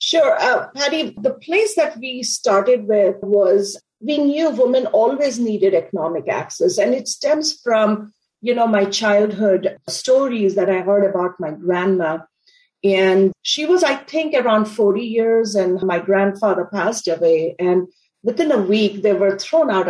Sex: female